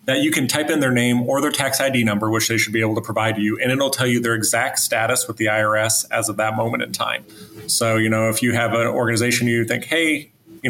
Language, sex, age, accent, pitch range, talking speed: English, male, 30-49, American, 110-125 Hz, 275 wpm